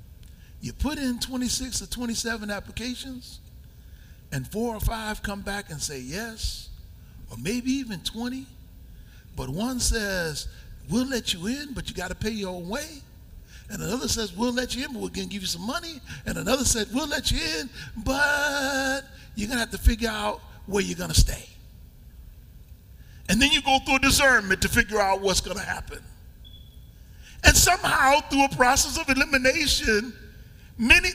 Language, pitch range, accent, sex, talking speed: English, 160-260 Hz, American, male, 170 wpm